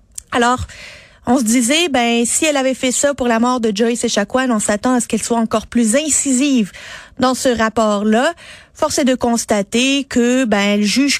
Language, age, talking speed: French, 30-49, 200 wpm